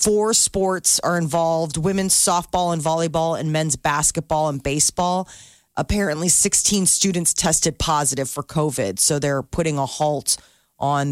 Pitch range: 145-175 Hz